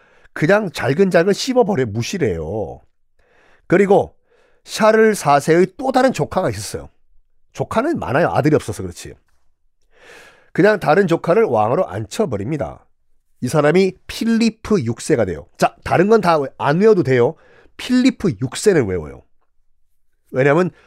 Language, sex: Korean, male